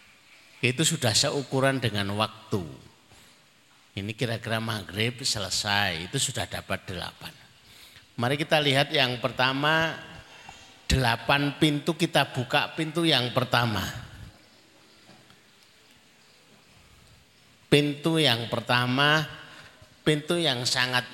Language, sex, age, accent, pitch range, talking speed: Indonesian, male, 50-69, native, 110-145 Hz, 90 wpm